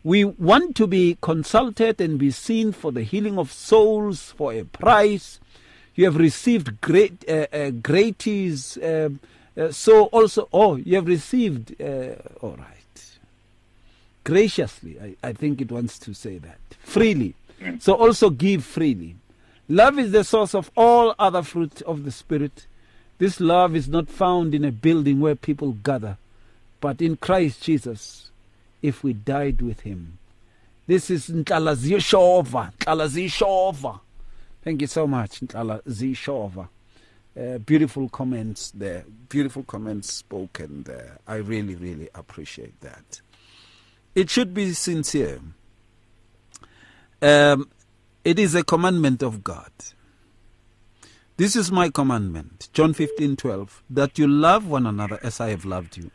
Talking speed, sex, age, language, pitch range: 140 wpm, male, 50-69, English, 110-175 Hz